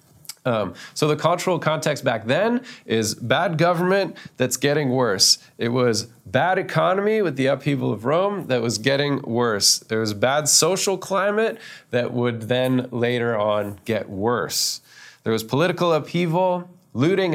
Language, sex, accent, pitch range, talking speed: English, male, American, 120-175 Hz, 150 wpm